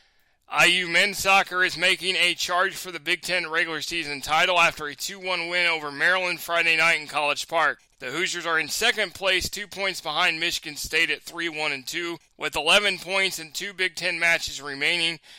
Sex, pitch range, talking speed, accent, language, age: male, 160-185 Hz, 185 wpm, American, English, 20-39